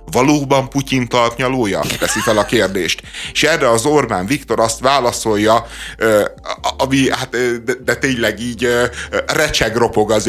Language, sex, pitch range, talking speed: Hungarian, male, 100-130 Hz, 130 wpm